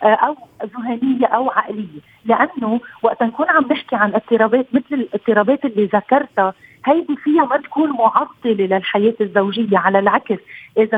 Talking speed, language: 135 wpm, Arabic